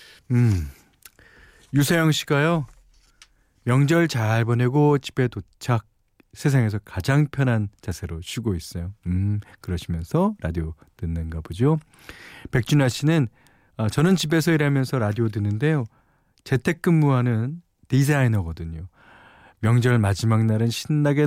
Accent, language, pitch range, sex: native, Korean, 95-150 Hz, male